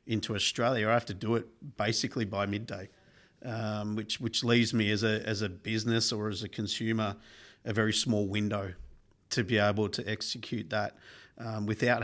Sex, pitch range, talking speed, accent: male, 105-115 Hz, 180 wpm, Australian